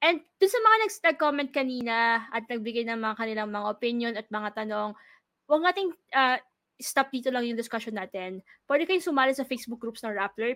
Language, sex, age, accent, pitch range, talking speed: English, female, 20-39, Filipino, 225-270 Hz, 195 wpm